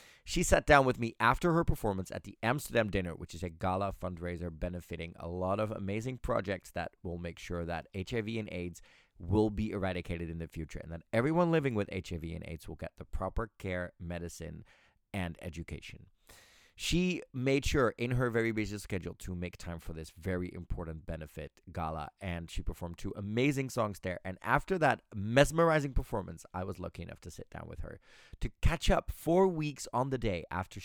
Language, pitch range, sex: Dutch, 85-115 Hz, male